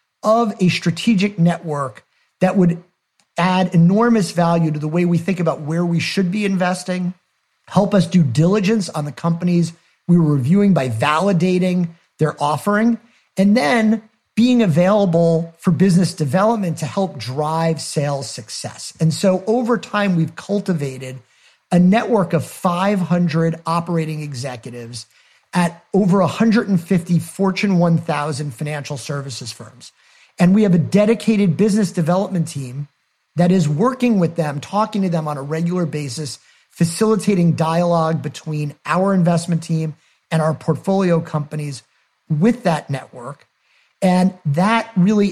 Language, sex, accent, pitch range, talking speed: English, male, American, 155-195 Hz, 135 wpm